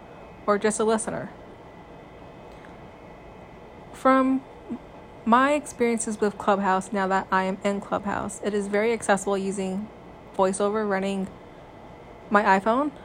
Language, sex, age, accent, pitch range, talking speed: English, female, 20-39, American, 190-220 Hz, 110 wpm